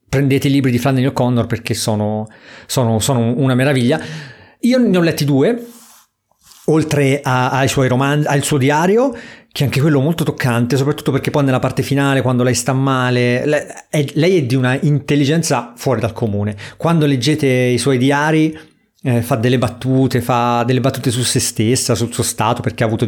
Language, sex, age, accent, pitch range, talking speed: Italian, male, 40-59, native, 120-150 Hz, 185 wpm